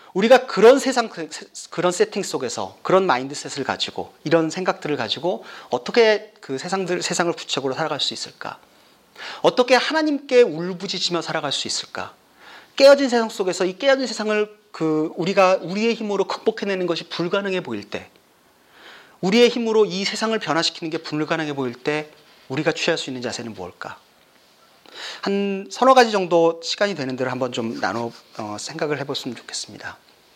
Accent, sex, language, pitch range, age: native, male, Korean, 145-205 Hz, 40-59